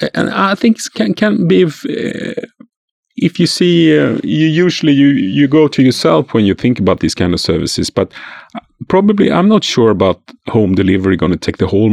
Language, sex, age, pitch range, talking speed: English, male, 30-49, 95-155 Hz, 205 wpm